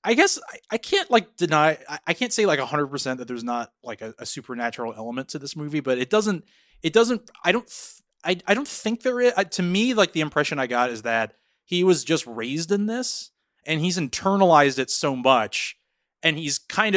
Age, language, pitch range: 30-49, English, 125-190 Hz